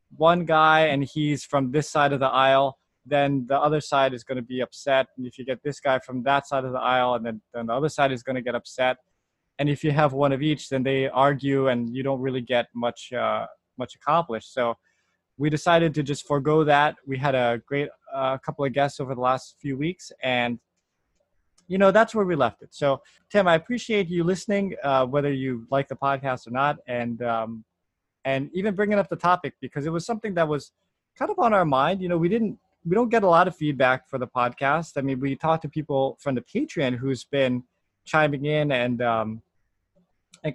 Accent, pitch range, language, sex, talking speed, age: American, 125-150 Hz, English, male, 225 wpm, 20-39